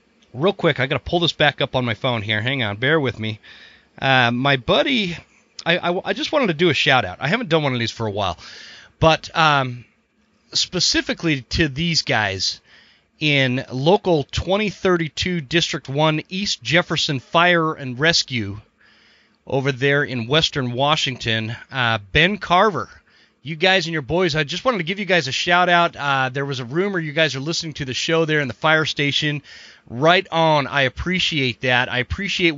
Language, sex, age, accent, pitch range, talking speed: English, male, 30-49, American, 125-165 Hz, 185 wpm